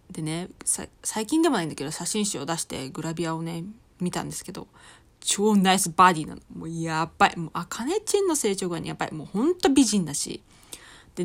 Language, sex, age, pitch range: Japanese, female, 20-39, 170-260 Hz